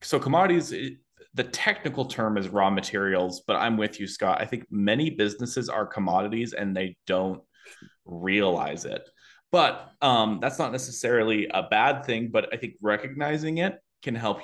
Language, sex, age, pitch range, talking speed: English, male, 20-39, 95-115 Hz, 160 wpm